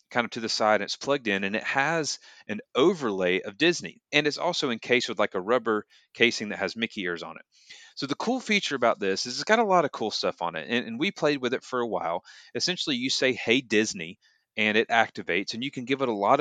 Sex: male